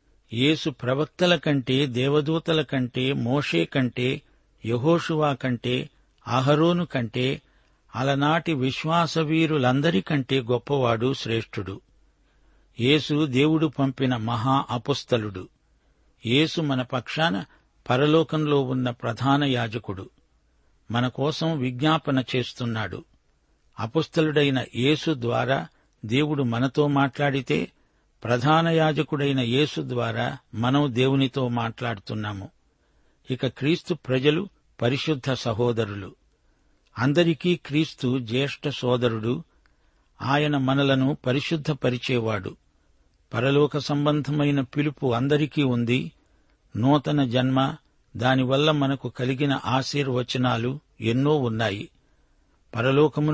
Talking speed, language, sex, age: 75 wpm, Telugu, male, 60-79